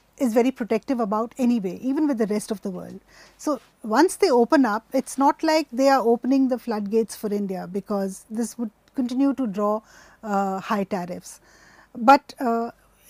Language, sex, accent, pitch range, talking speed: English, female, Indian, 220-295 Hz, 180 wpm